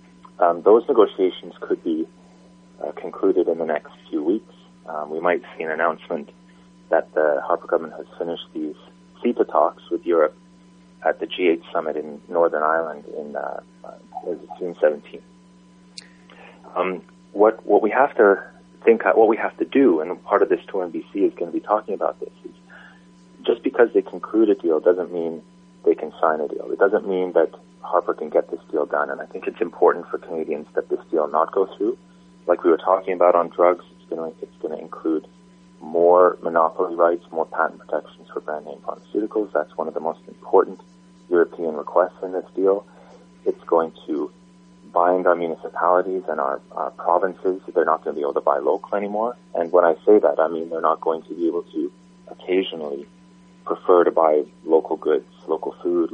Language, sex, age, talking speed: English, male, 30-49, 190 wpm